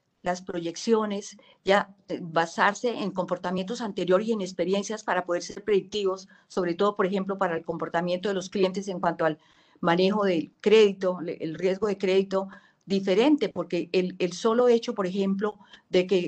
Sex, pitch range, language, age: female, 175-215 Hz, Spanish, 50-69